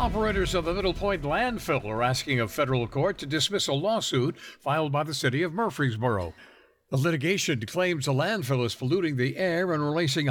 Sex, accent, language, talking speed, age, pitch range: male, American, English, 185 wpm, 60-79, 115-160 Hz